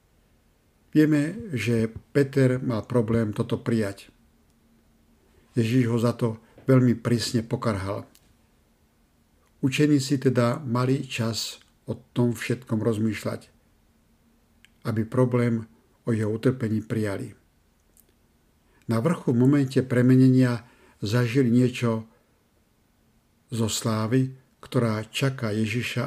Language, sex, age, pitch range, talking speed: Slovak, male, 50-69, 110-125 Hz, 90 wpm